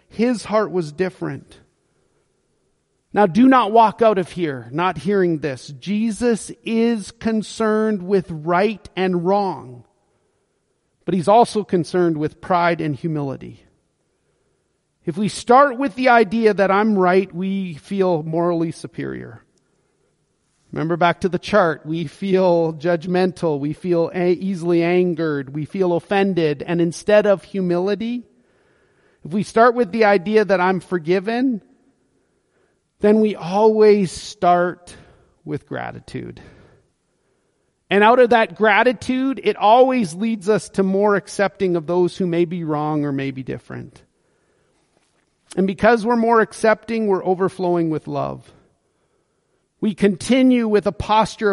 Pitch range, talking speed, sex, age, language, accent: 170-215 Hz, 130 wpm, male, 40-59, English, American